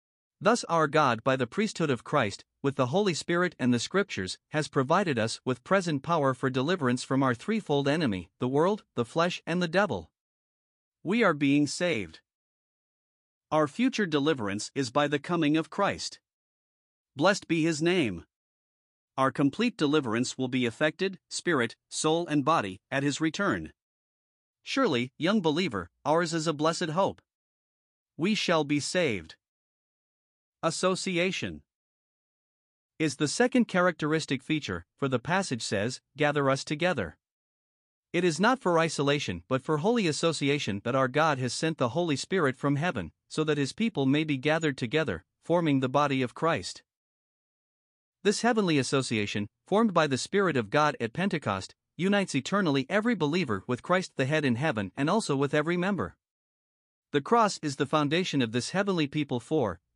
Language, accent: English, American